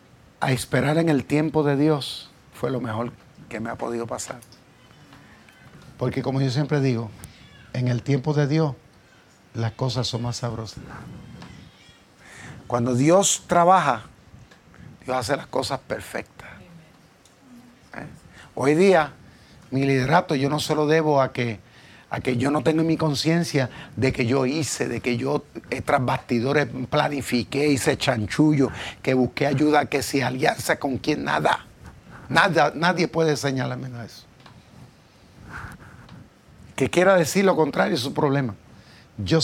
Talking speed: 140 wpm